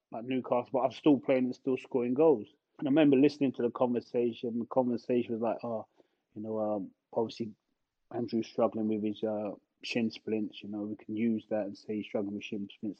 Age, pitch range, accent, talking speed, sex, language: 20-39, 115-150 Hz, British, 210 wpm, male, English